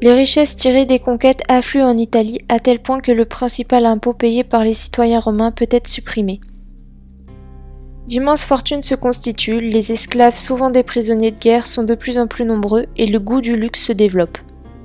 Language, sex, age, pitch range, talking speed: French, female, 20-39, 220-250 Hz, 190 wpm